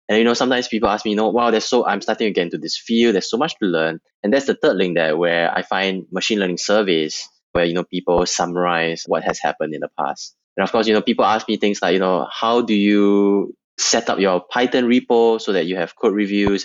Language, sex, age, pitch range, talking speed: English, male, 20-39, 85-110 Hz, 255 wpm